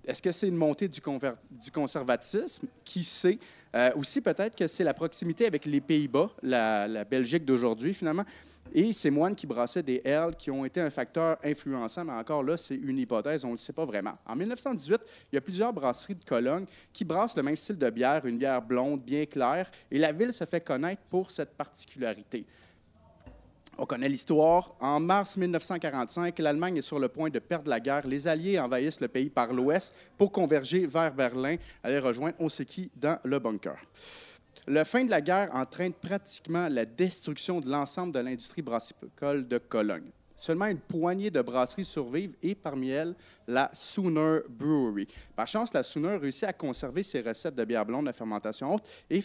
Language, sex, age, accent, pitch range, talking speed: French, male, 30-49, Canadian, 130-180 Hz, 190 wpm